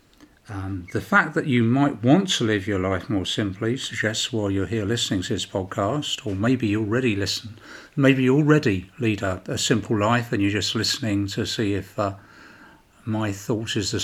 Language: English